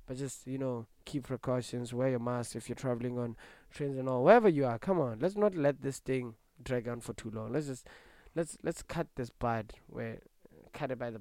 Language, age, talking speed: English, 20-39, 225 wpm